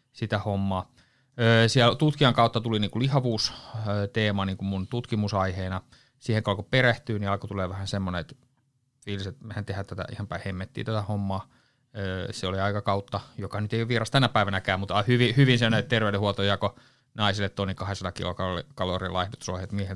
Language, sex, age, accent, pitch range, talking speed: Finnish, male, 30-49, native, 95-125 Hz, 160 wpm